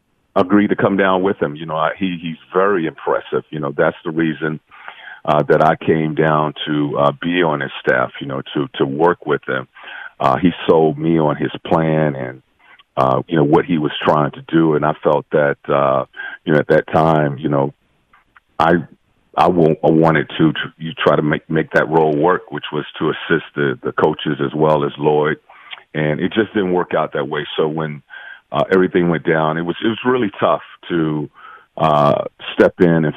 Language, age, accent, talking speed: English, 50-69, American, 210 wpm